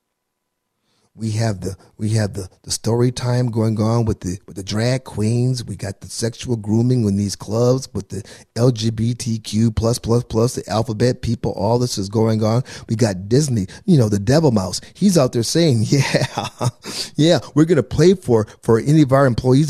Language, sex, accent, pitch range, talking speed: English, male, American, 105-140 Hz, 190 wpm